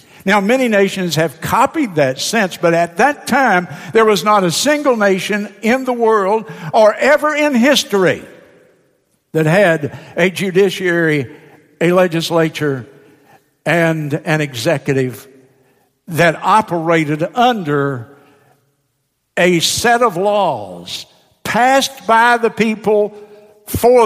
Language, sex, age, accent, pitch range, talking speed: English, male, 60-79, American, 145-195 Hz, 110 wpm